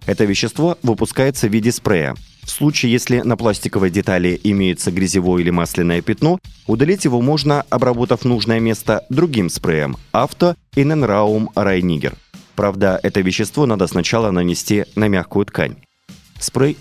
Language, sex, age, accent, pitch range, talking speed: Russian, male, 30-49, native, 95-130 Hz, 145 wpm